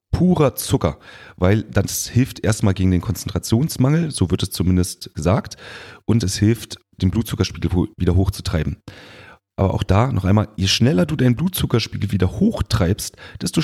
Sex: male